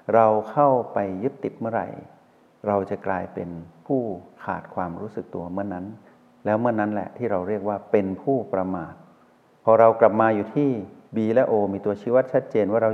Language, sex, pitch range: Thai, male, 95-120 Hz